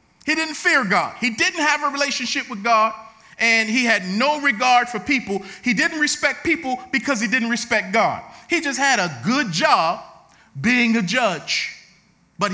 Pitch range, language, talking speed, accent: 210-280 Hz, English, 175 wpm, American